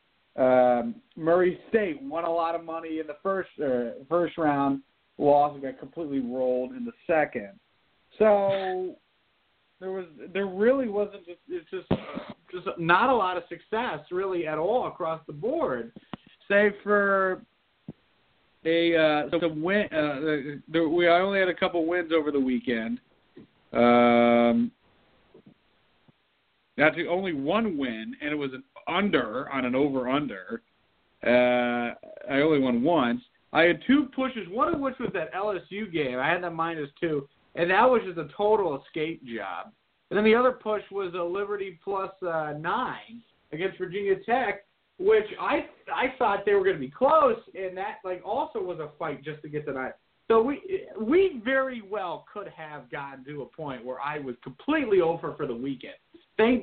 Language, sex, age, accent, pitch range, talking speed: English, male, 40-59, American, 145-210 Hz, 170 wpm